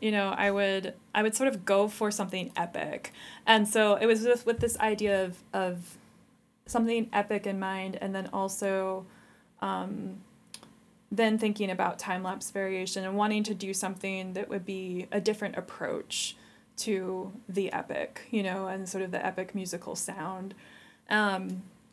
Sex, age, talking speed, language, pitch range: female, 20-39, 165 wpm, English, 190-220 Hz